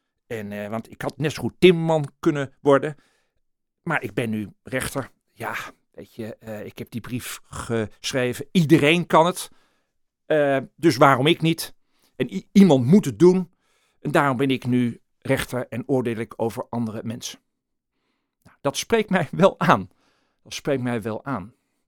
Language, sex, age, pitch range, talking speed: Dutch, male, 50-69, 120-160 Hz, 170 wpm